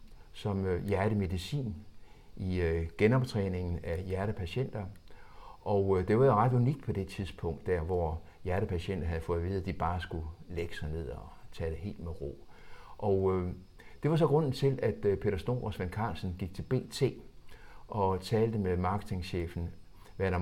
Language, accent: Danish, native